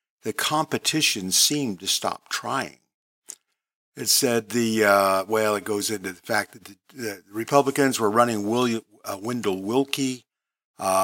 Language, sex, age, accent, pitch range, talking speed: English, male, 50-69, American, 105-140 Hz, 140 wpm